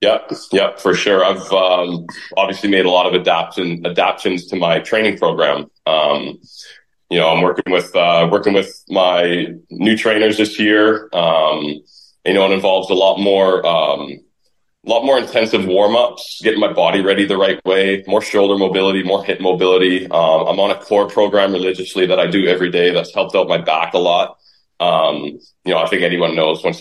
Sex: male